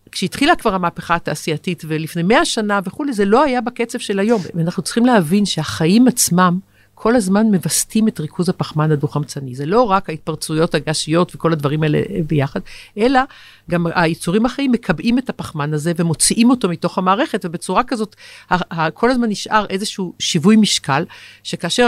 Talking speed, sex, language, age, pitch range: 155 wpm, female, Hebrew, 50-69, 170-230 Hz